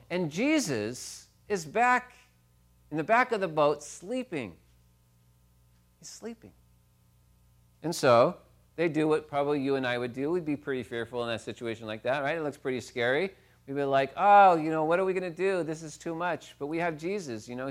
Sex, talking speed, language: male, 205 wpm, English